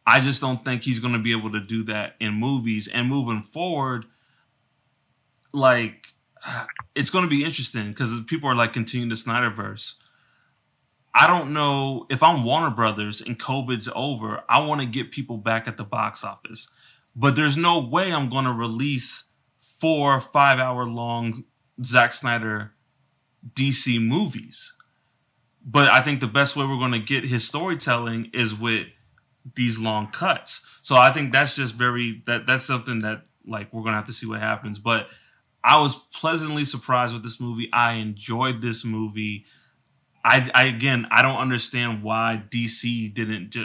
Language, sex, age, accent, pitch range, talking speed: English, male, 30-49, American, 110-135 Hz, 170 wpm